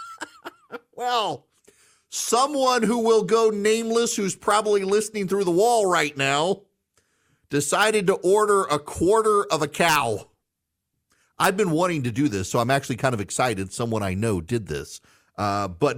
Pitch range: 100-155 Hz